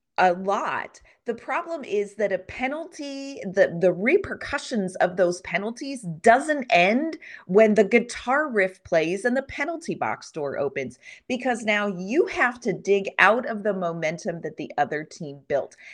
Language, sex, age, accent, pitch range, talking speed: English, female, 30-49, American, 175-230 Hz, 160 wpm